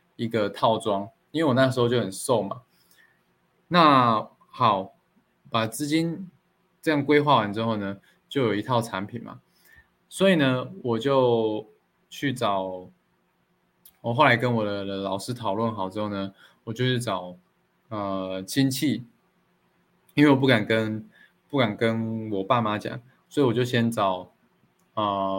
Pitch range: 105-135 Hz